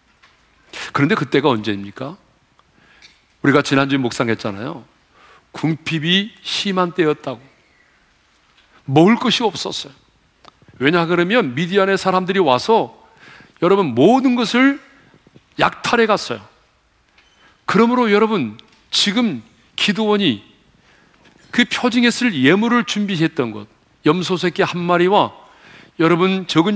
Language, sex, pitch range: Korean, male, 150-230 Hz